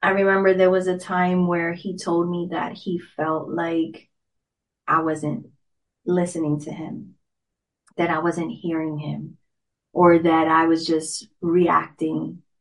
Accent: American